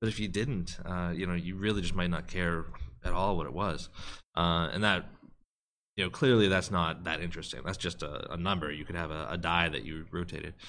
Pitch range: 85-110 Hz